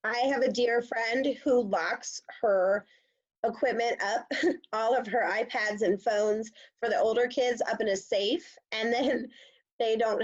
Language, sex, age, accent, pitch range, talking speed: English, female, 30-49, American, 195-260 Hz, 165 wpm